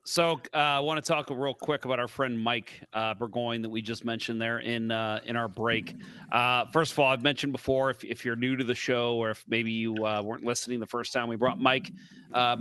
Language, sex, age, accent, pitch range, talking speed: English, male, 30-49, American, 120-145 Hz, 245 wpm